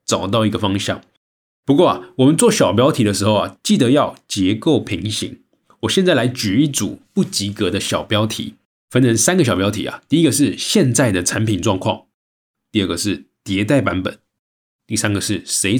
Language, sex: Chinese, male